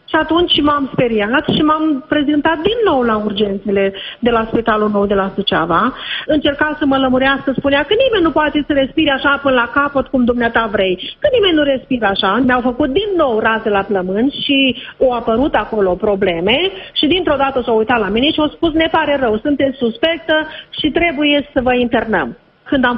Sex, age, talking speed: female, 40-59, 195 wpm